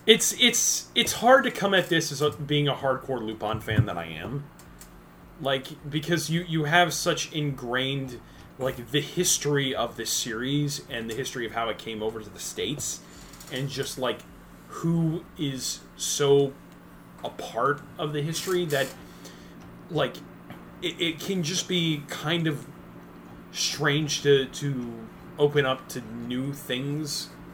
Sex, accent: male, American